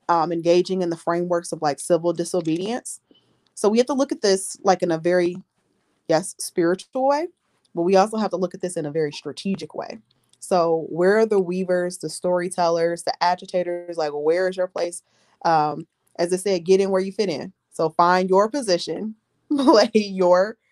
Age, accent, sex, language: 20-39, American, female, English